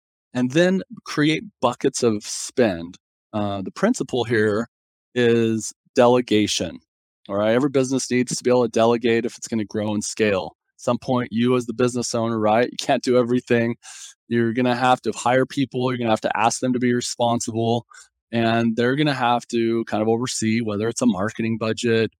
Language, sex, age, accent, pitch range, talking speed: English, male, 20-39, American, 110-135 Hz, 195 wpm